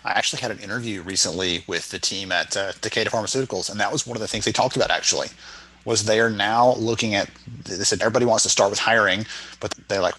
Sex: male